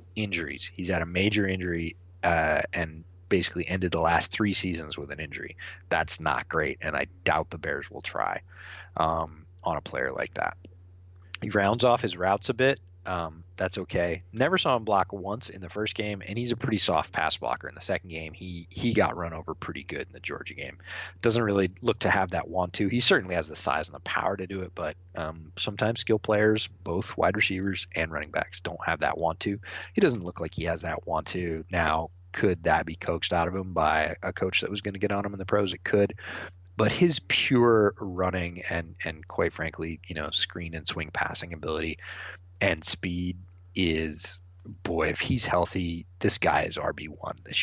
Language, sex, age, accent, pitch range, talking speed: English, male, 30-49, American, 85-100 Hz, 210 wpm